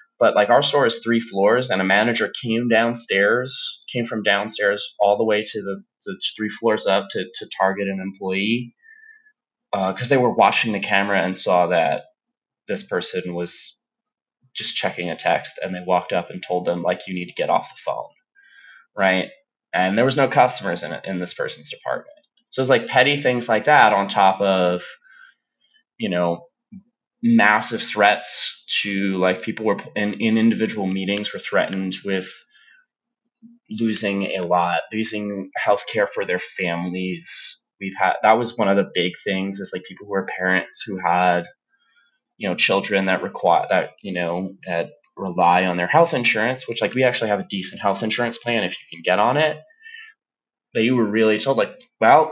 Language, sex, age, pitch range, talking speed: English, male, 20-39, 95-150 Hz, 180 wpm